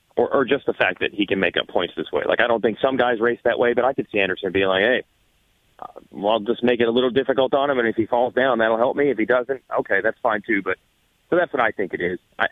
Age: 30-49